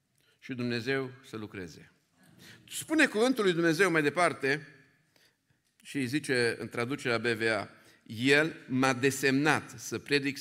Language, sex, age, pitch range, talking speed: Romanian, male, 50-69, 115-140 Hz, 120 wpm